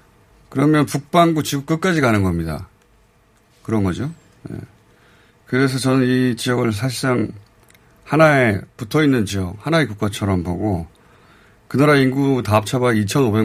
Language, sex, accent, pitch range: Korean, male, native, 100-135 Hz